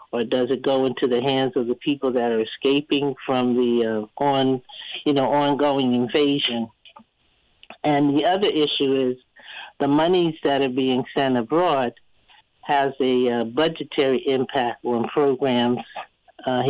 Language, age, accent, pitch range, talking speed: English, 60-79, American, 125-145 Hz, 145 wpm